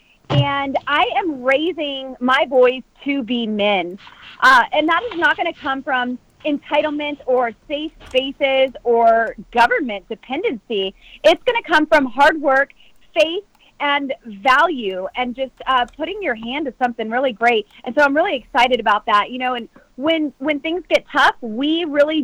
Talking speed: 165 wpm